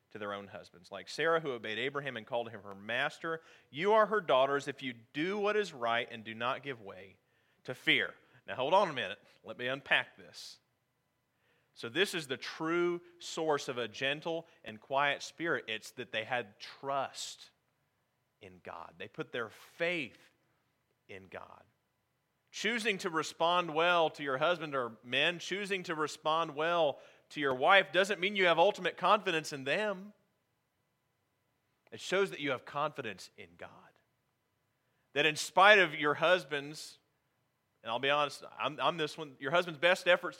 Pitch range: 125-175 Hz